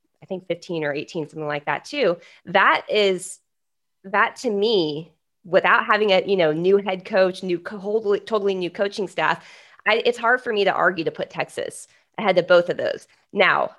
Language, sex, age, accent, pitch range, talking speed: English, female, 20-39, American, 155-190 Hz, 185 wpm